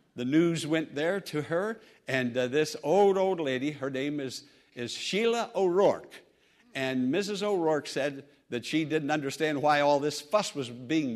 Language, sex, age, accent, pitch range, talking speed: English, male, 60-79, American, 145-210 Hz, 170 wpm